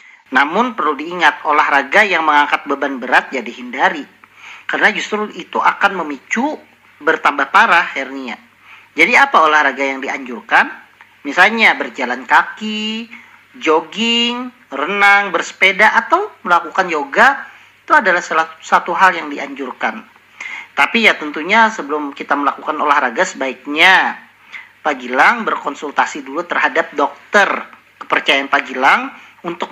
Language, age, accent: Indonesian, 40-59, native